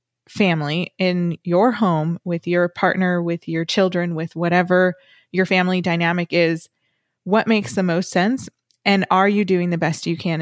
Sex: female